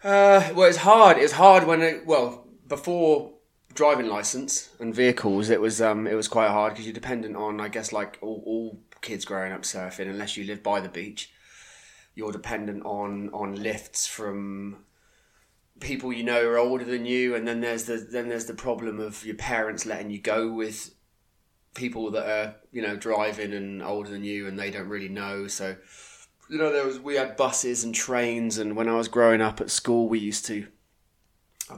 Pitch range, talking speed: 100-120 Hz, 200 wpm